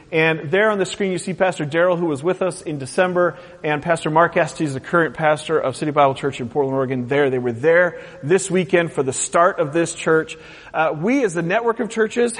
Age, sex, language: 40-59, male, English